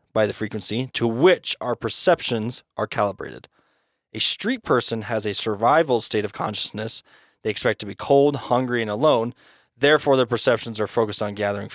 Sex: male